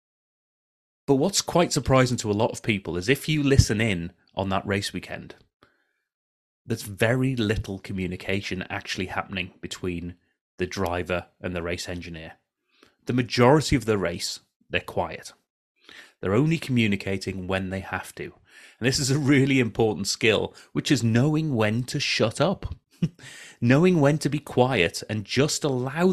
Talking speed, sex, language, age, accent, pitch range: 155 wpm, male, English, 30-49, British, 95-130 Hz